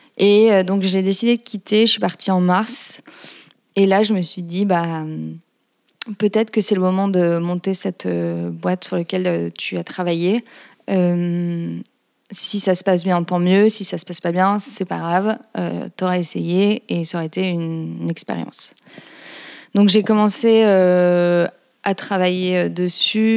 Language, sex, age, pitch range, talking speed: French, female, 20-39, 175-210 Hz, 170 wpm